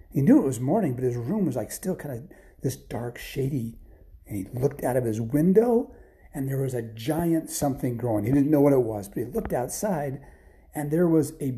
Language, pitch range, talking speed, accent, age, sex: English, 110-155 Hz, 230 wpm, American, 40-59, male